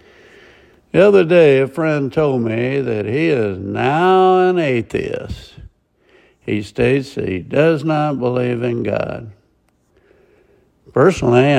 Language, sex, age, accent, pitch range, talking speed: English, male, 60-79, American, 105-150 Hz, 120 wpm